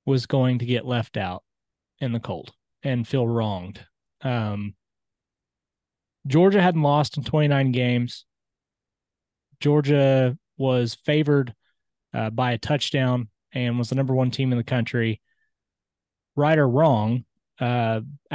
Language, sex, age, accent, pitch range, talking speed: English, male, 20-39, American, 115-145 Hz, 130 wpm